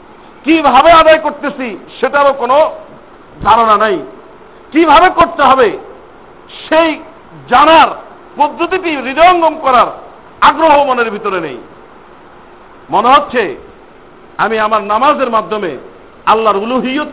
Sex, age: male, 50-69